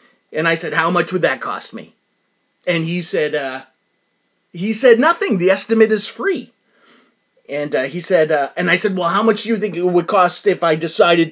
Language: English